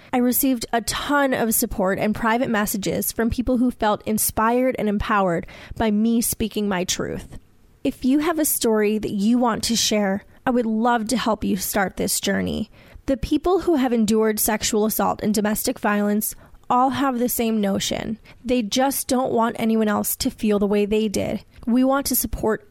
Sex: female